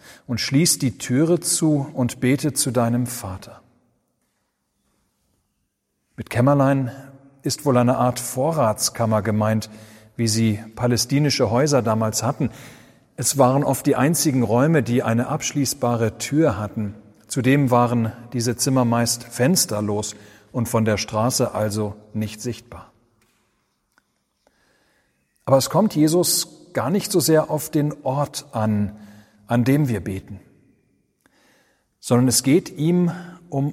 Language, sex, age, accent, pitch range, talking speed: German, male, 40-59, German, 110-145 Hz, 125 wpm